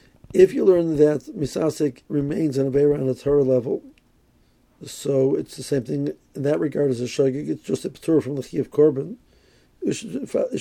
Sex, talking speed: male, 200 wpm